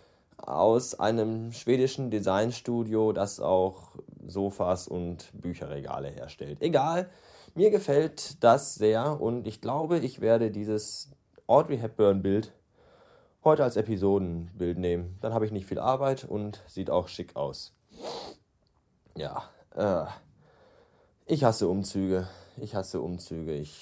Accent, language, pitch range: German, German, 95-135 Hz